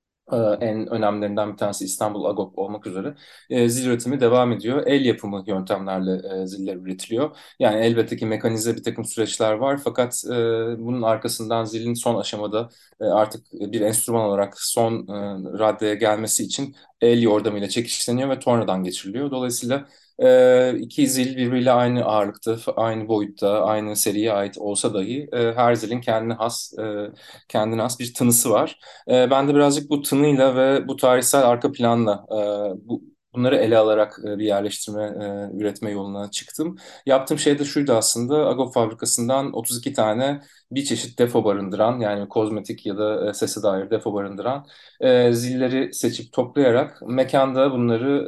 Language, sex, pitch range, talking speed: Turkish, male, 105-125 Hz, 145 wpm